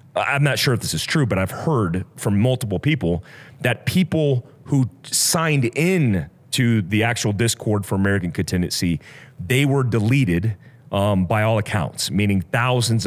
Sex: male